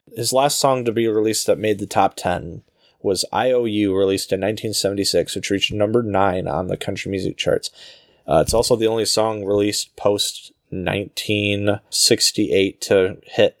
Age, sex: 20-39, male